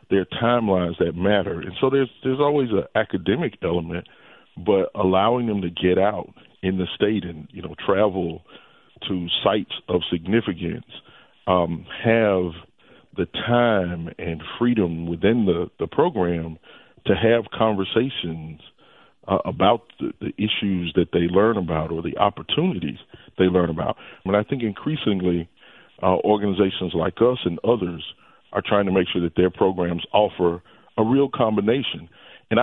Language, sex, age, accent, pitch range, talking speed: English, male, 40-59, American, 90-110 Hz, 150 wpm